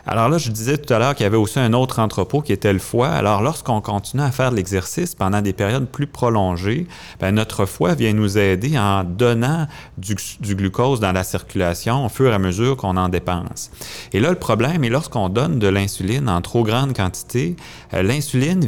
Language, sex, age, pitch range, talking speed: French, male, 30-49, 100-130 Hz, 210 wpm